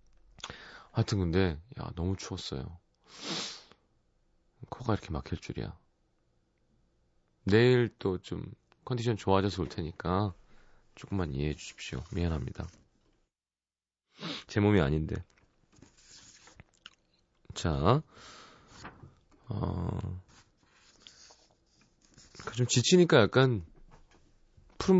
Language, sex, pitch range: Korean, male, 85-115 Hz